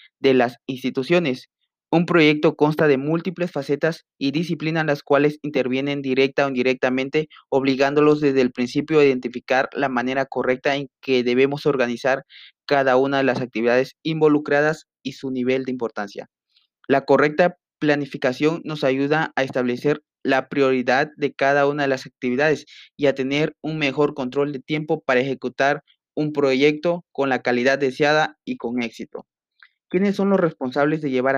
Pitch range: 130-150 Hz